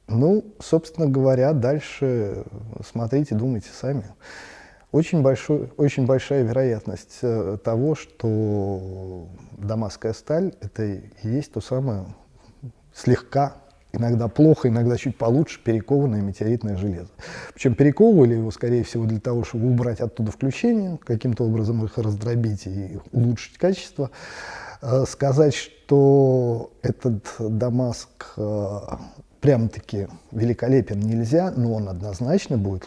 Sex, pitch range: male, 110-135 Hz